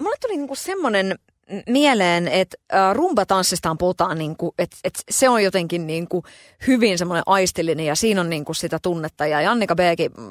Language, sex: Finnish, female